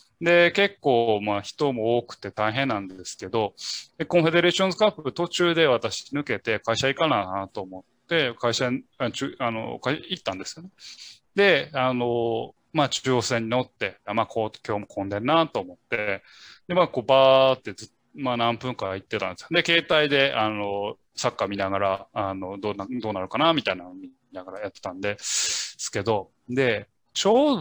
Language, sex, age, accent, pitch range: Japanese, male, 20-39, native, 115-165 Hz